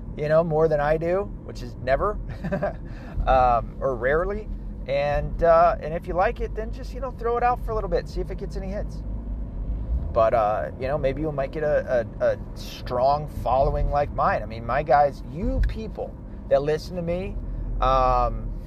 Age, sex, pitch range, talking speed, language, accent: 30-49, male, 125-180 Hz, 200 wpm, English, American